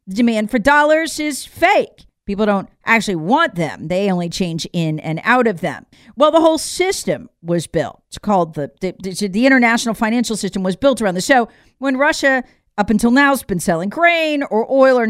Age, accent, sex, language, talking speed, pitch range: 40-59, American, female, English, 205 wpm, 190-275 Hz